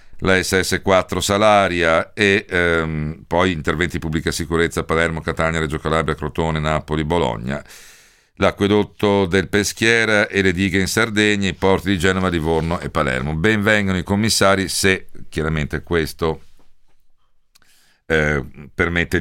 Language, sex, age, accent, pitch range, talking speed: Italian, male, 50-69, native, 80-100 Hz, 125 wpm